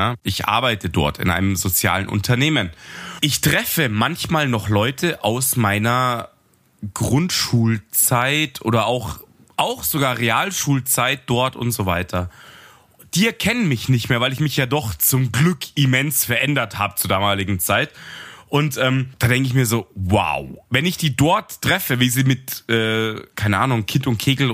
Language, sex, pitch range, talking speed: German, male, 110-150 Hz, 155 wpm